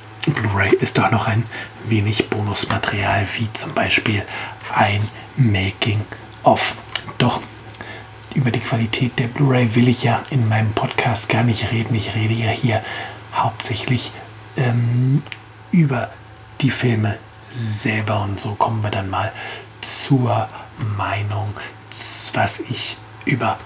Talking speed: 120 wpm